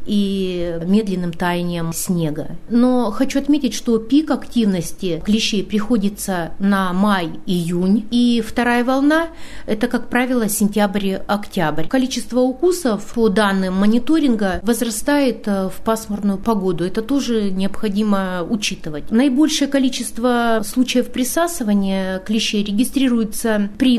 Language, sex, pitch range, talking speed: Russian, female, 200-250 Hz, 105 wpm